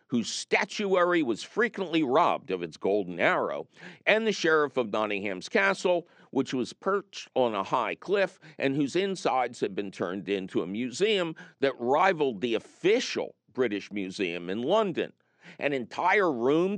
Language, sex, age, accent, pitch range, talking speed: English, male, 50-69, American, 120-195 Hz, 150 wpm